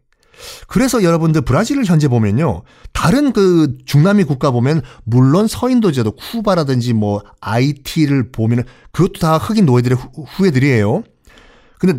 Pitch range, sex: 120-190 Hz, male